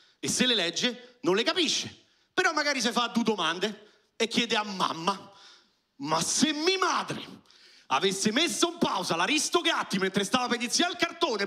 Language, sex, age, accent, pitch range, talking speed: Italian, male, 40-59, native, 220-320 Hz, 175 wpm